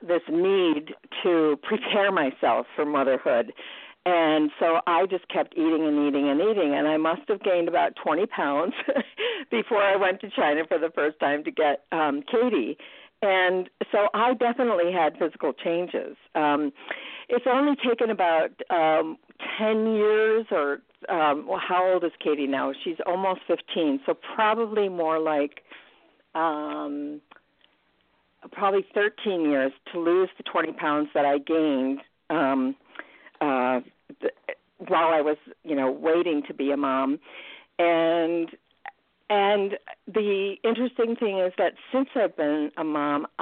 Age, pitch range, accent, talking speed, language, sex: 50-69, 150-210 Hz, American, 140 wpm, English, female